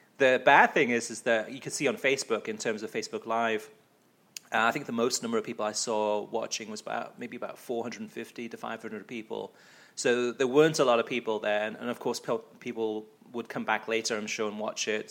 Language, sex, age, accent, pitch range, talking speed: English, male, 30-49, British, 110-135 Hz, 220 wpm